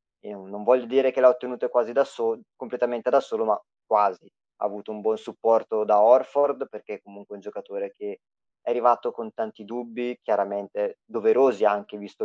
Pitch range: 110-145 Hz